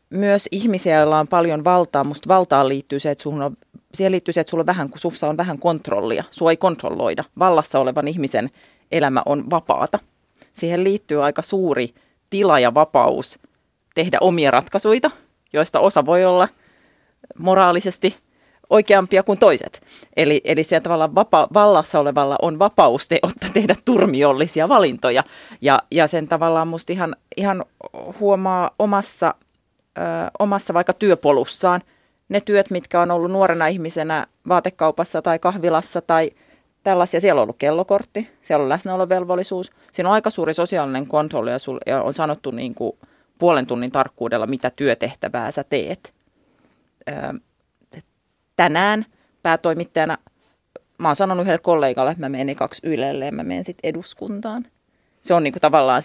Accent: native